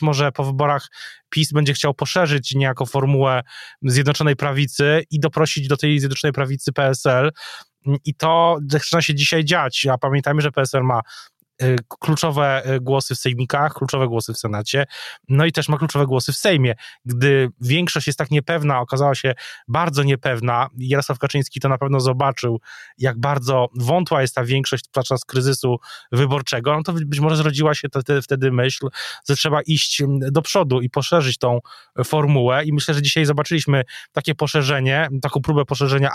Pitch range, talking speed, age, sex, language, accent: 135-155 Hz, 165 wpm, 20-39, male, Polish, native